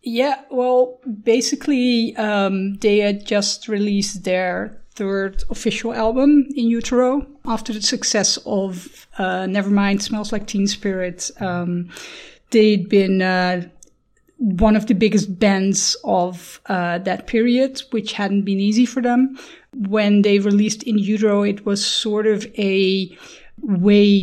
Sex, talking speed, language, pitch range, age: female, 135 wpm, English, 195-235 Hz, 30-49